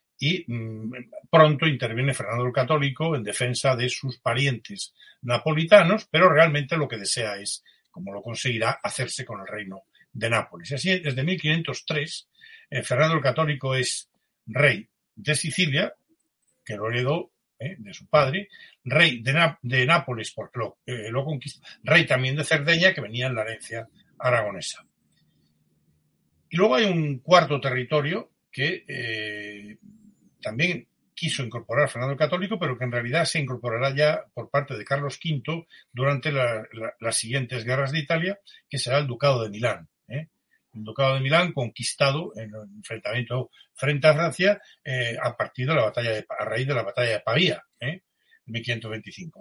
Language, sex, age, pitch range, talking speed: Spanish, male, 60-79, 120-155 Hz, 160 wpm